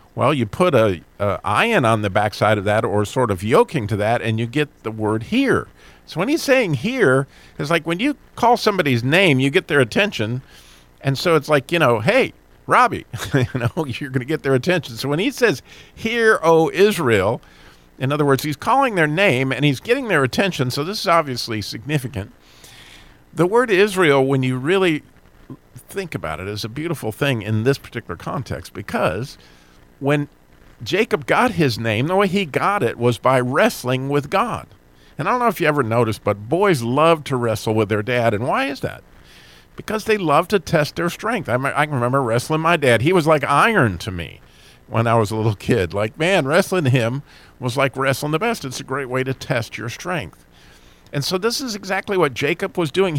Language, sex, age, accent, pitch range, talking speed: English, male, 50-69, American, 115-170 Hz, 210 wpm